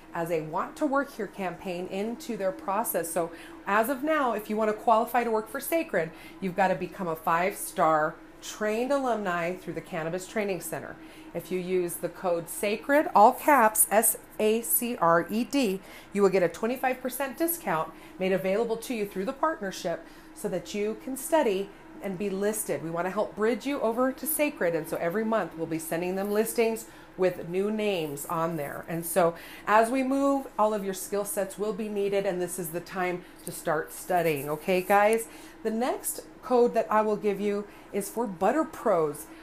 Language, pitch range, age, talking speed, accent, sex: English, 180-240 Hz, 30-49, 185 wpm, American, female